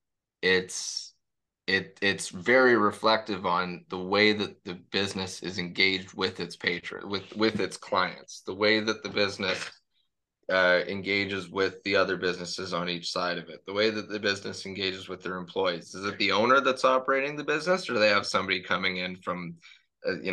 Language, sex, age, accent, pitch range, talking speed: English, male, 20-39, American, 95-125 Hz, 185 wpm